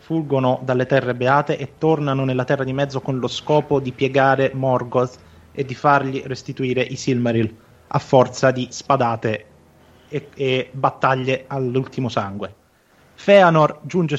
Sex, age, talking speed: male, 20-39, 135 wpm